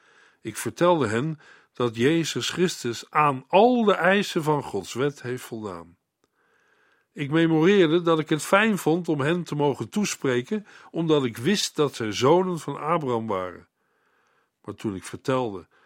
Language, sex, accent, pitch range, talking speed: Dutch, male, Dutch, 125-175 Hz, 150 wpm